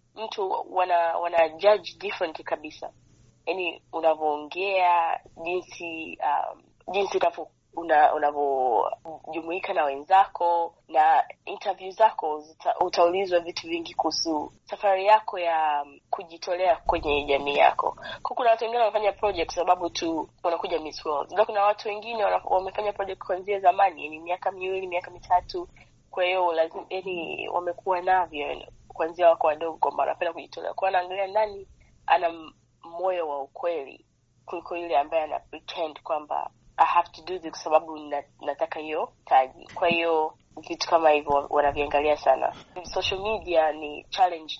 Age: 20-39